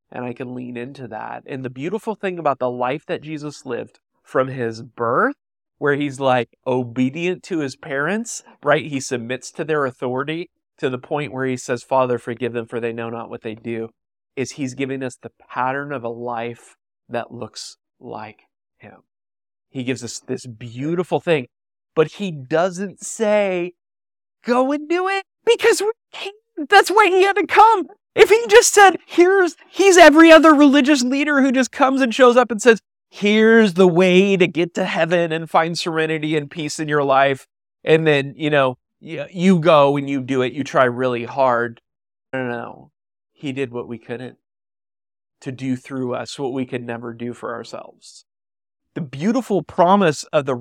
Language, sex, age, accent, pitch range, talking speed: English, male, 30-49, American, 125-205 Hz, 185 wpm